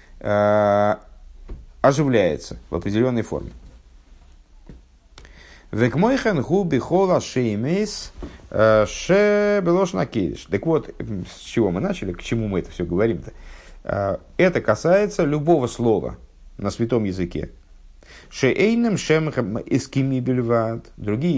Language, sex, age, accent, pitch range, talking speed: Russian, male, 50-69, native, 95-130 Hz, 65 wpm